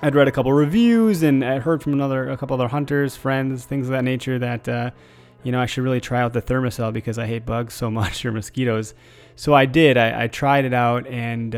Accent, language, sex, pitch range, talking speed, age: American, English, male, 115-130 Hz, 245 wpm, 20-39